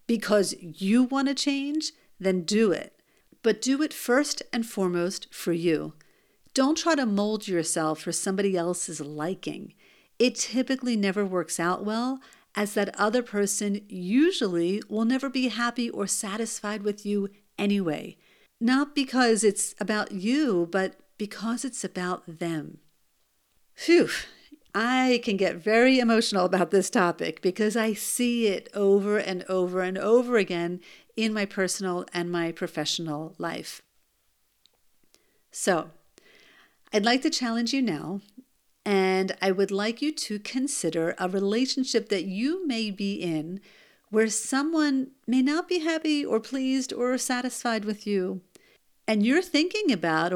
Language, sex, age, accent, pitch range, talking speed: English, female, 50-69, American, 185-255 Hz, 140 wpm